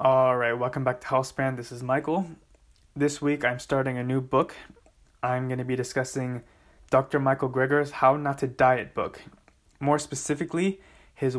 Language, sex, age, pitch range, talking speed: English, male, 20-39, 125-145 Hz, 165 wpm